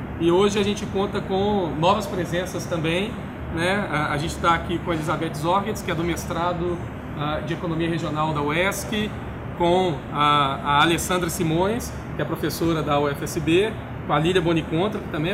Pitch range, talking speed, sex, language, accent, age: 165-195 Hz, 165 wpm, male, Portuguese, Brazilian, 20-39